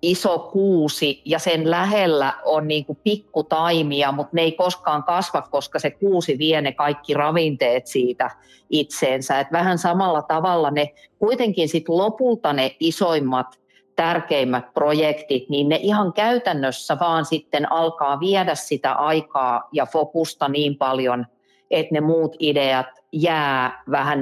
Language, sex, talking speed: Finnish, female, 135 wpm